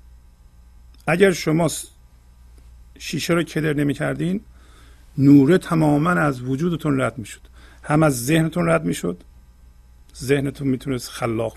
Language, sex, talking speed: Persian, male, 115 wpm